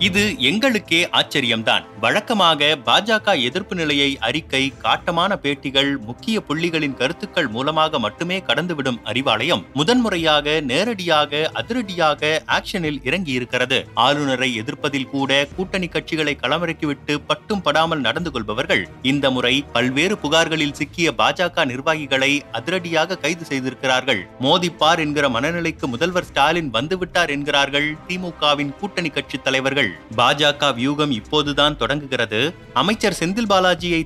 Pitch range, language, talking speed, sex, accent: 140-175 Hz, Tamil, 105 wpm, male, native